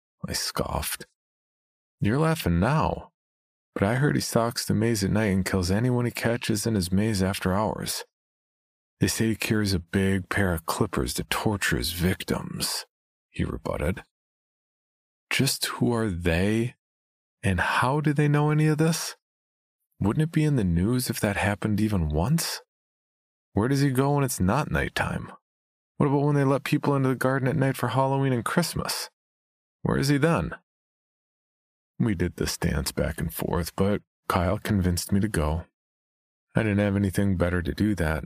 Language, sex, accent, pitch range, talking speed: English, male, American, 85-120 Hz, 175 wpm